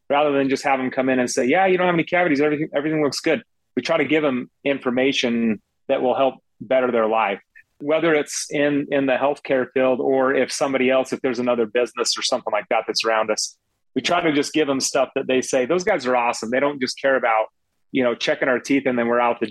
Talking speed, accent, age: 250 wpm, American, 30-49